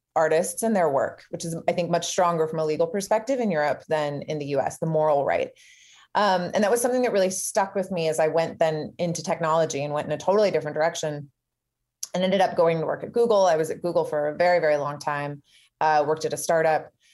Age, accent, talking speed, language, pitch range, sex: 30-49, American, 240 wpm, English, 155-200 Hz, female